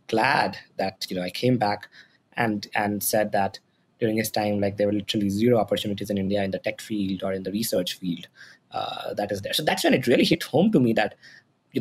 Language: English